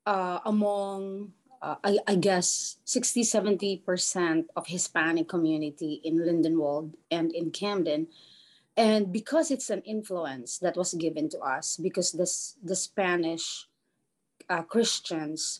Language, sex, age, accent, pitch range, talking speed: English, female, 20-39, Filipino, 165-210 Hz, 120 wpm